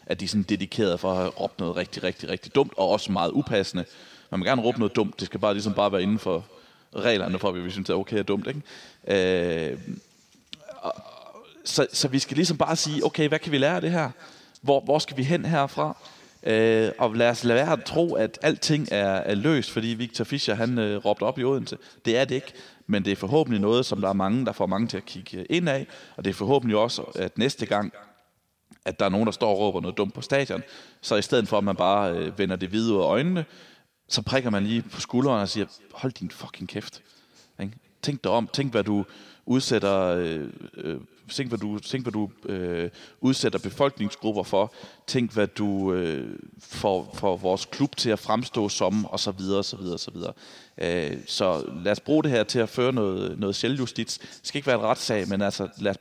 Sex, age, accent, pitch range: male, 30-49, native, 100-130 Hz